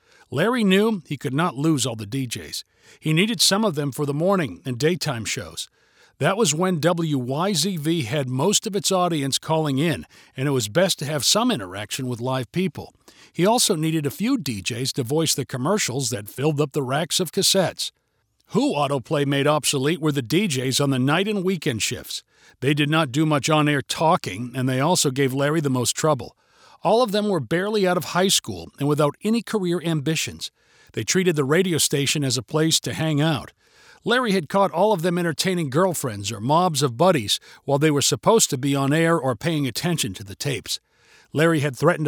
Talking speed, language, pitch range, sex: 200 wpm, English, 130-175 Hz, male